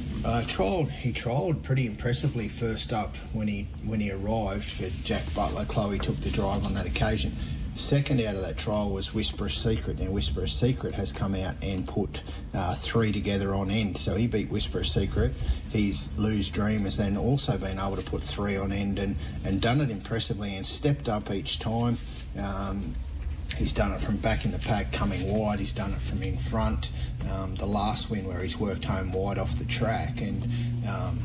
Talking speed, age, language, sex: 200 wpm, 30-49, English, male